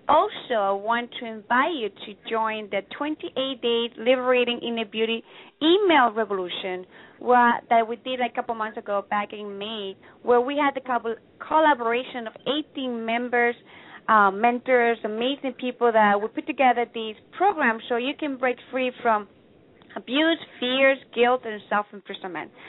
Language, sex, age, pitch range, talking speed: English, female, 30-49, 210-260 Hz, 150 wpm